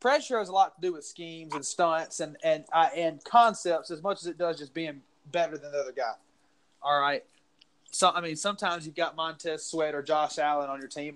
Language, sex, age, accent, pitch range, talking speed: English, male, 20-39, American, 155-190 Hz, 230 wpm